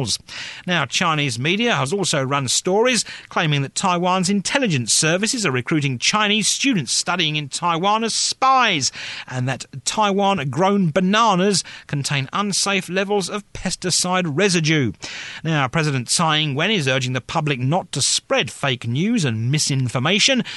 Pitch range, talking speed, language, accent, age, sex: 140-205 Hz, 135 wpm, English, British, 40-59, male